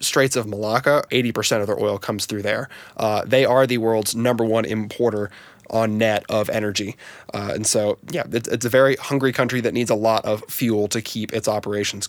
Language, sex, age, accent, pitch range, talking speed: English, male, 20-39, American, 110-130 Hz, 210 wpm